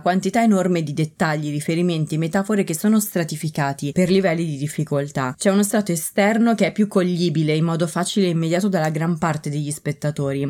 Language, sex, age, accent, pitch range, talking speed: Italian, female, 20-39, native, 155-200 Hz, 175 wpm